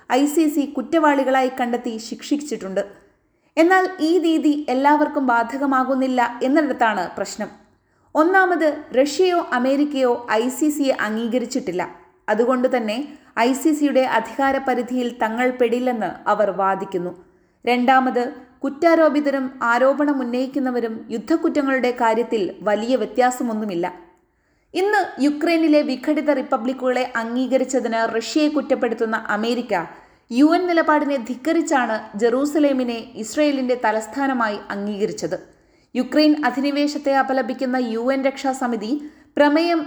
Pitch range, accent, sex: 230-290 Hz, native, female